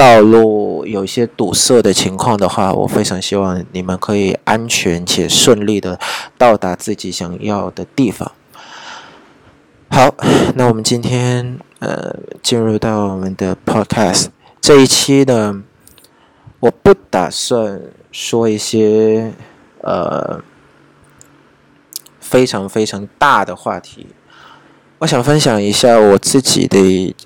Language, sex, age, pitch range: Vietnamese, male, 20-39, 100-125 Hz